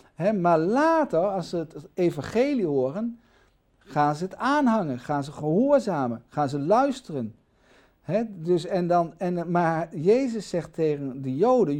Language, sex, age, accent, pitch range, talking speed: Dutch, male, 50-69, Dutch, 155-230 Hz, 145 wpm